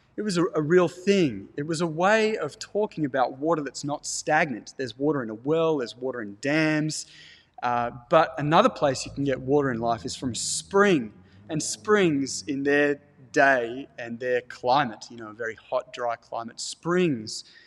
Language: English